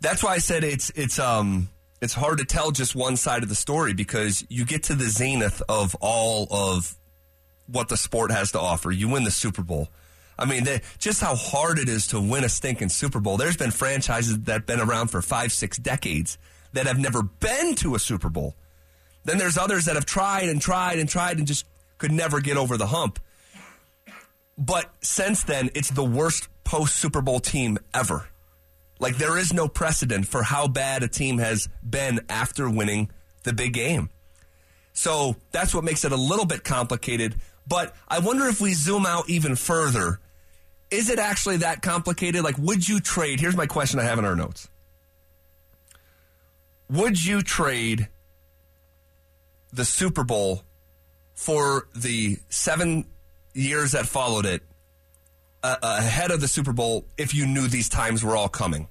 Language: English